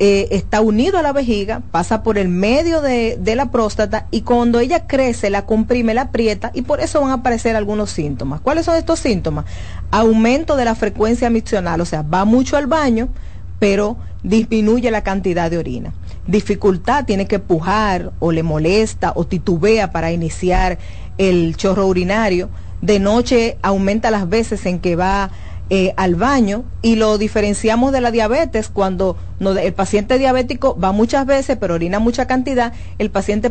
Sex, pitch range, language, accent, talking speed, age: female, 190-245 Hz, Spanish, American, 170 wpm, 40-59